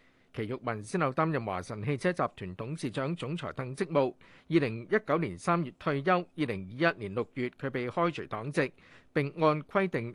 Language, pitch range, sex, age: Chinese, 125-170 Hz, male, 50-69